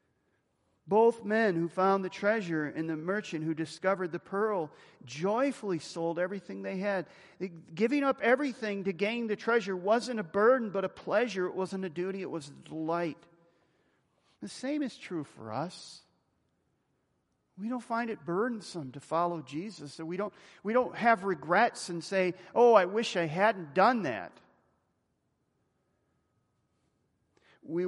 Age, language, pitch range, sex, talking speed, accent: 40-59, English, 140-190 Hz, male, 150 wpm, American